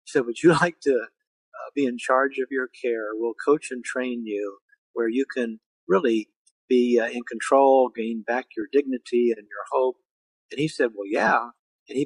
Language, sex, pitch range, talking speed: English, male, 115-145 Hz, 195 wpm